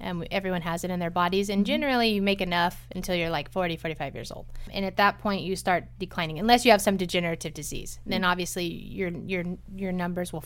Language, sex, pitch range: English, female, 170-200 Hz